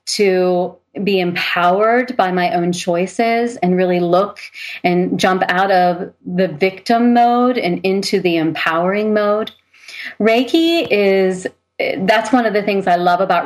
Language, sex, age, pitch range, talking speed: English, female, 30-49, 175-215 Hz, 145 wpm